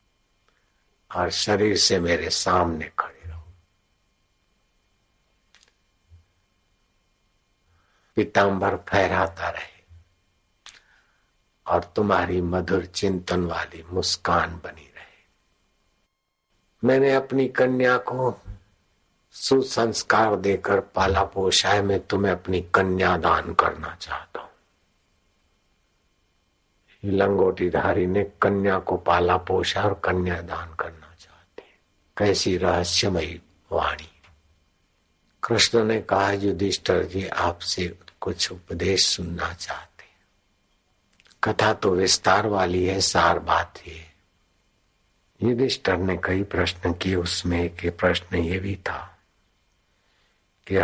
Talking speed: 90 wpm